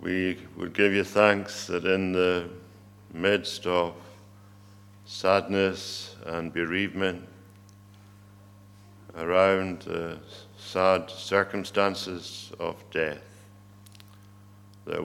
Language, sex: English, male